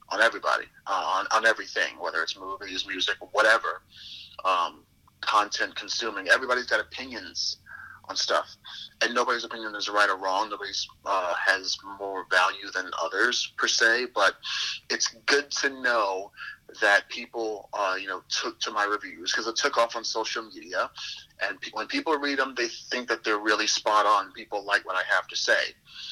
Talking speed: 175 wpm